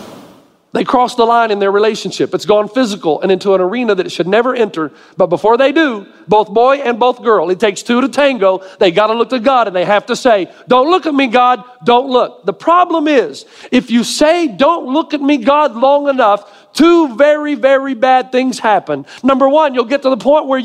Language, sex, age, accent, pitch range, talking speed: English, male, 50-69, American, 230-300 Hz, 225 wpm